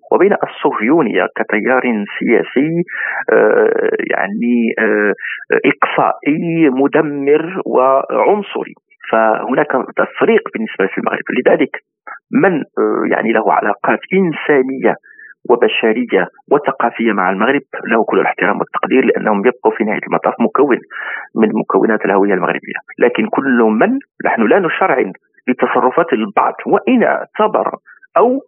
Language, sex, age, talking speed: Arabic, male, 50-69, 100 wpm